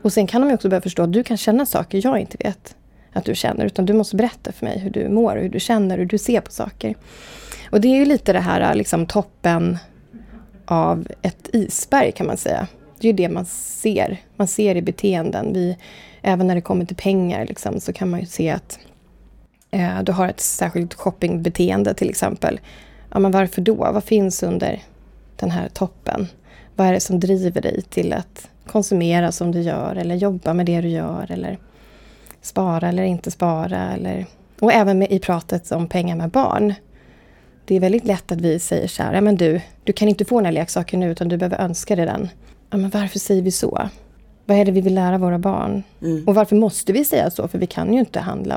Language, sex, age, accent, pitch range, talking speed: Swedish, female, 30-49, native, 175-210 Hz, 215 wpm